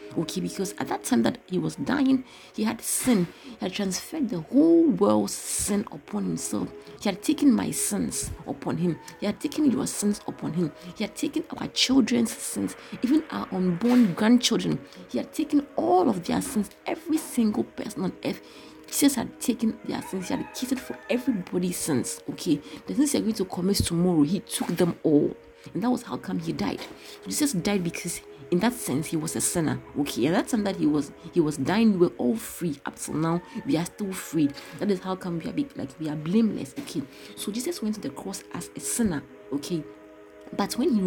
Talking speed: 205 wpm